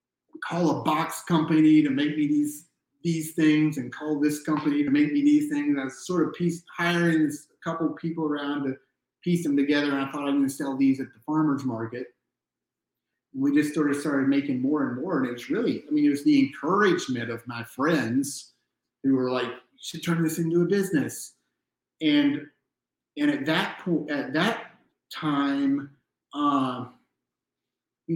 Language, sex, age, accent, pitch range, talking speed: English, male, 30-49, American, 125-170 Hz, 180 wpm